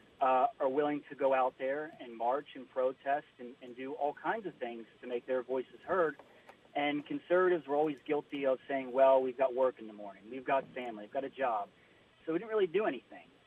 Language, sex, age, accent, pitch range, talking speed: English, male, 40-59, American, 130-155 Hz, 225 wpm